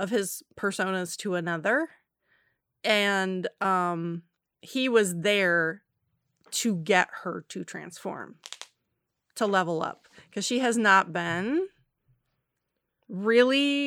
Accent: American